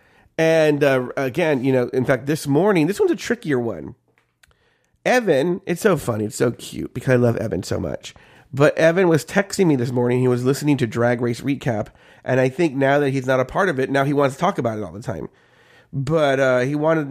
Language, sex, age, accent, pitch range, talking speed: English, male, 30-49, American, 125-175 Hz, 230 wpm